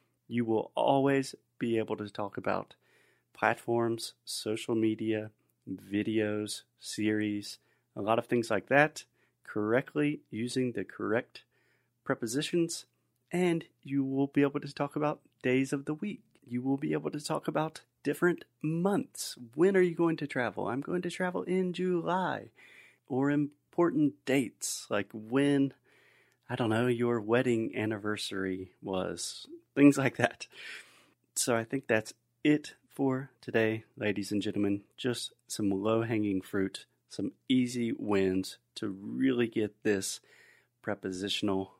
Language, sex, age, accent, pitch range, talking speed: Portuguese, male, 30-49, American, 105-140 Hz, 135 wpm